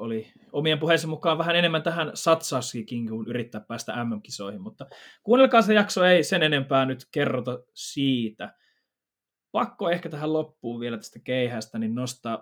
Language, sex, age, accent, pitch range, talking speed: Finnish, male, 20-39, native, 120-165 Hz, 150 wpm